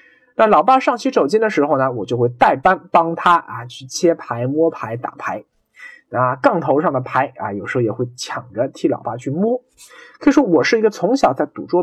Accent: native